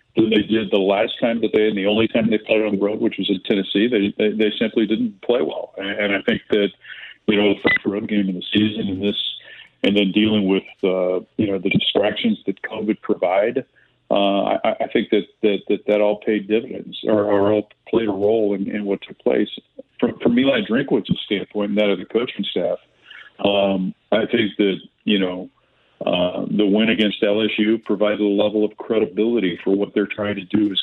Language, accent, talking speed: English, American, 215 wpm